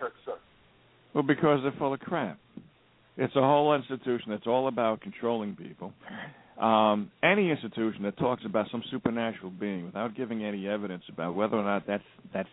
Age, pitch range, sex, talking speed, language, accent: 60-79, 100-135 Hz, male, 160 wpm, English, American